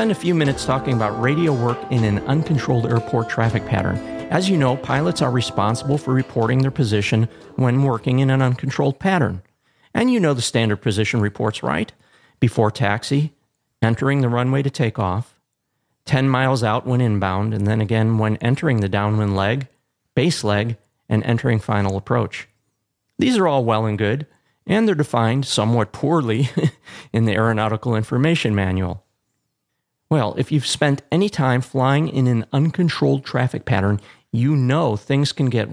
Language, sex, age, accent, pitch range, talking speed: English, male, 40-59, American, 110-145 Hz, 165 wpm